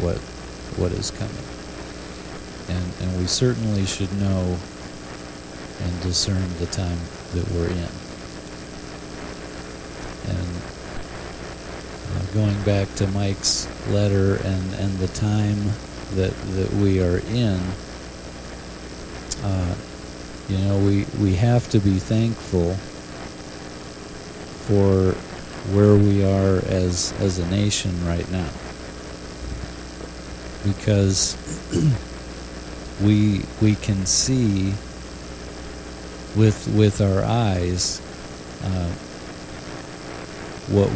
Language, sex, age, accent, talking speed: English, male, 50-69, American, 90 wpm